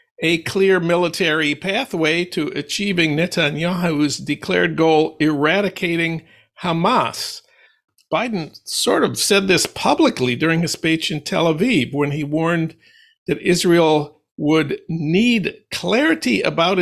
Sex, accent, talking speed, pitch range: male, American, 115 wpm, 150-200 Hz